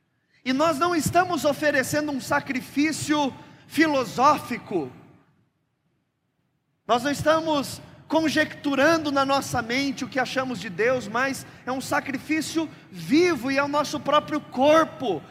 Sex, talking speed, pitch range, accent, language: male, 120 wpm, 200-285 Hz, Brazilian, Portuguese